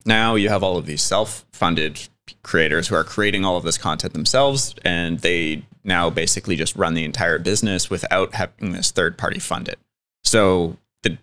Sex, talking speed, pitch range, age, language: male, 175 wpm, 85-105 Hz, 20-39, English